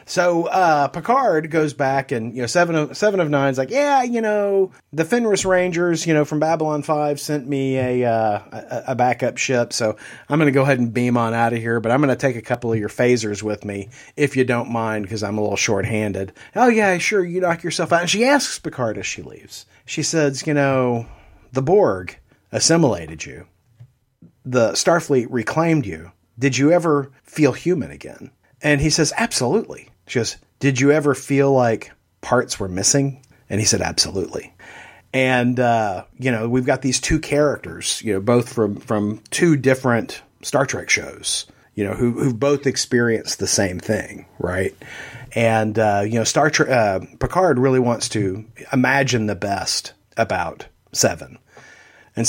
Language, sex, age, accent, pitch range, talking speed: English, male, 40-59, American, 110-150 Hz, 185 wpm